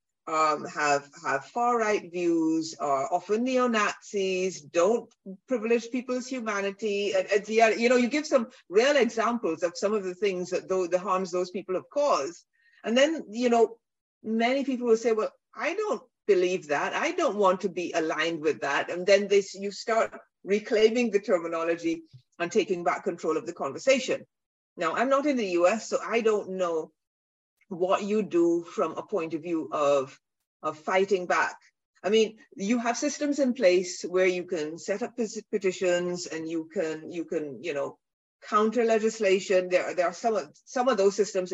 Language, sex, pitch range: English, female, 175-225 Hz